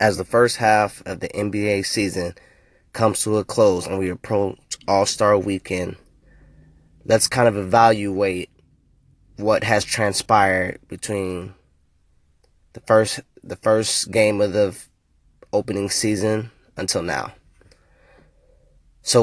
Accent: American